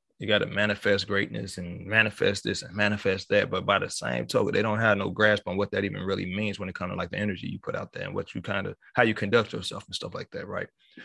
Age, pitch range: 30-49, 100-135 Hz